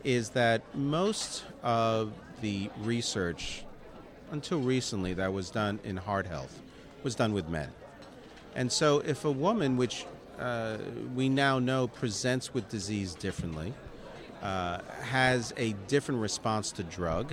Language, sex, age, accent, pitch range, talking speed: English, male, 40-59, American, 100-140 Hz, 135 wpm